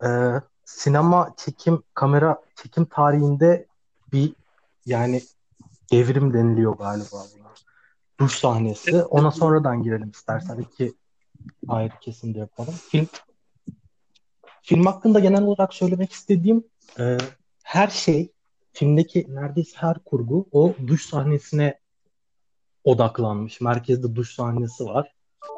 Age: 30-49